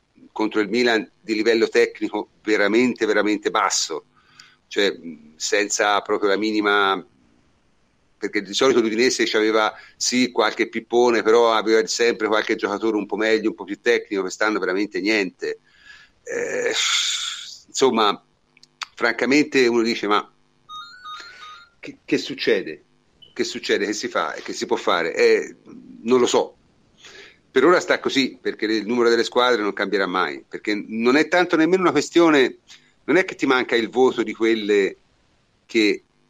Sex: male